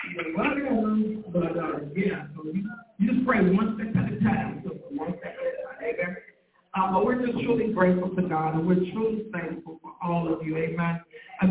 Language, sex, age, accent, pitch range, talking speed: English, male, 50-69, American, 175-215 Hz, 190 wpm